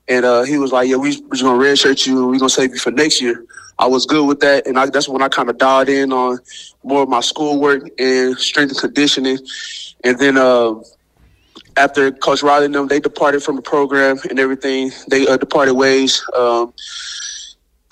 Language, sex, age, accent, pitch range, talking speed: English, male, 20-39, American, 125-140 Hz, 215 wpm